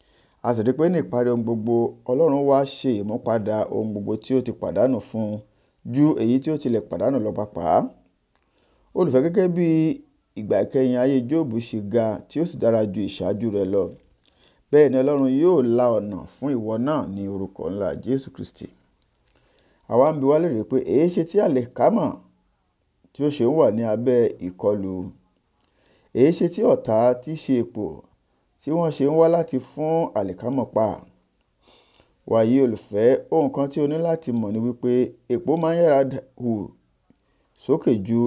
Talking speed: 145 wpm